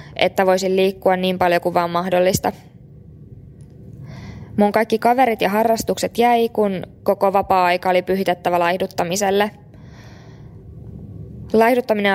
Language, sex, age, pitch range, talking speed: Finnish, female, 20-39, 180-200 Hz, 100 wpm